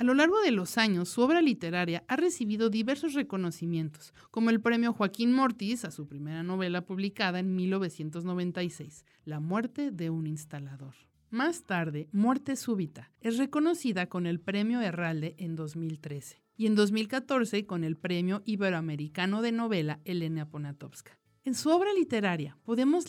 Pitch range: 160-235 Hz